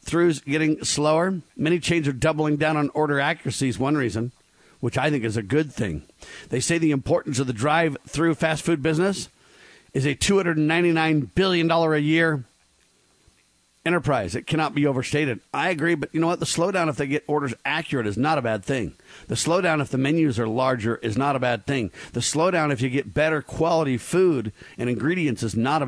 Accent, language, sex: American, English, male